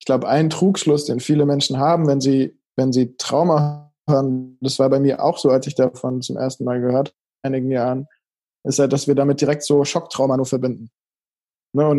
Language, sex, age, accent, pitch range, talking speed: German, male, 20-39, German, 130-145 Hz, 205 wpm